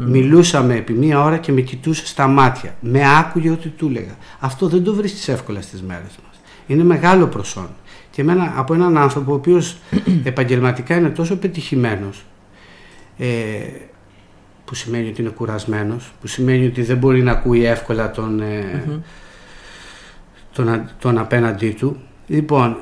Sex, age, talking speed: male, 50-69, 145 wpm